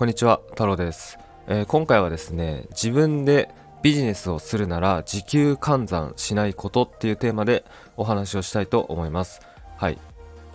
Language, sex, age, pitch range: Japanese, male, 20-39, 85-130 Hz